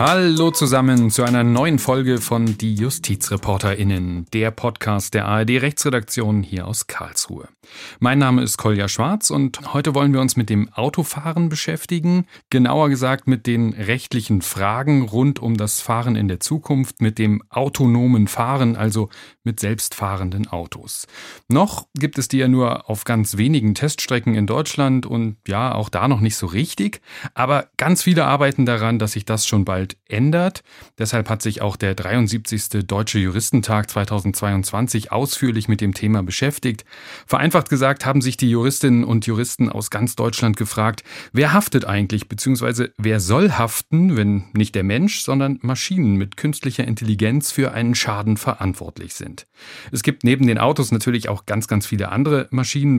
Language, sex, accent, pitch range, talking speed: German, male, German, 105-135 Hz, 160 wpm